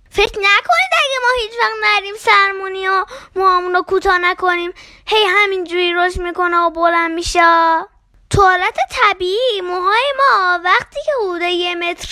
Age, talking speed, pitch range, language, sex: 10-29, 135 wpm, 310-405 Hz, Persian, female